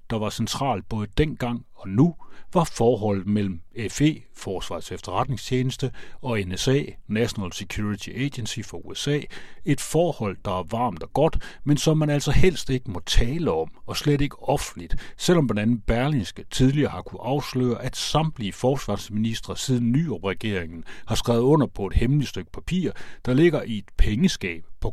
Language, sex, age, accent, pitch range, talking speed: Danish, male, 60-79, native, 100-140 Hz, 160 wpm